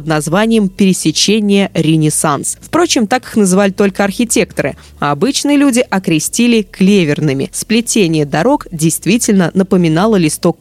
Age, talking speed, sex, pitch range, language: 20-39, 105 wpm, female, 165-220 Hz, Russian